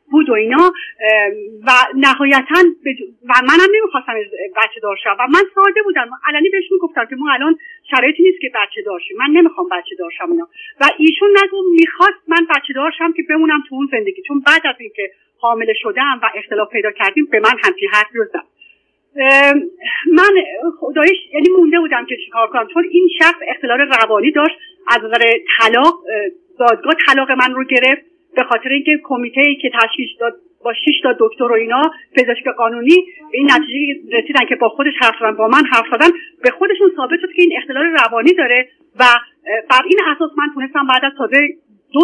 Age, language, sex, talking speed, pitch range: 40-59, Persian, female, 185 wpm, 255-350 Hz